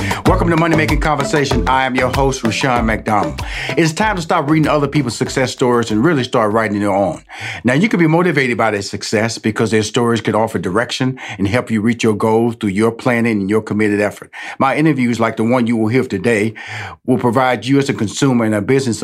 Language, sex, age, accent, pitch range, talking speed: English, male, 50-69, American, 110-140 Hz, 225 wpm